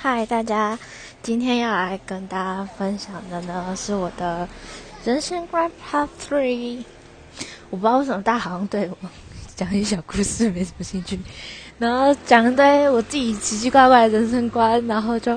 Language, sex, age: Chinese, female, 20-39